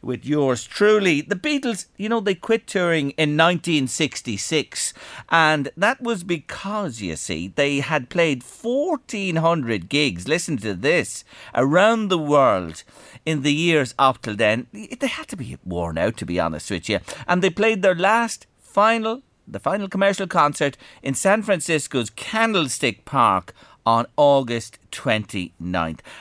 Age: 50-69